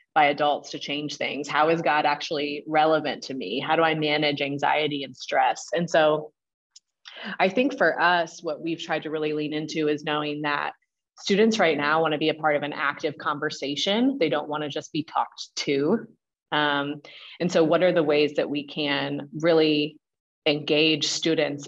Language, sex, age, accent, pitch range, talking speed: English, female, 30-49, American, 150-180 Hz, 190 wpm